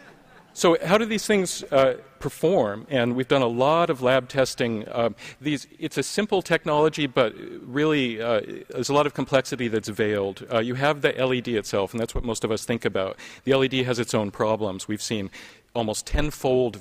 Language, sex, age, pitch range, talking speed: English, male, 40-59, 100-125 Hz, 195 wpm